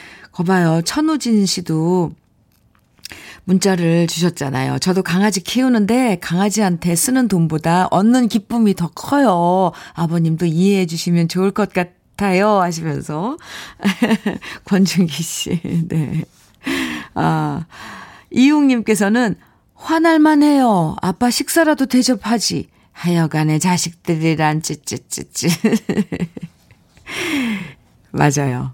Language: Korean